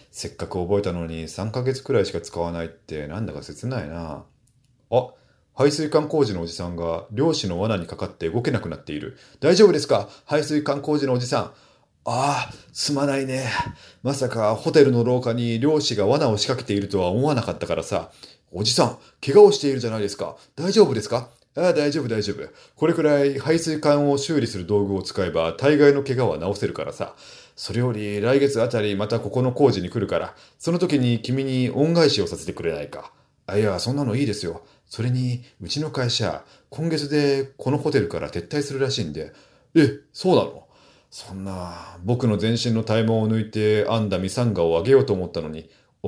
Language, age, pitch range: Japanese, 30-49, 100-140 Hz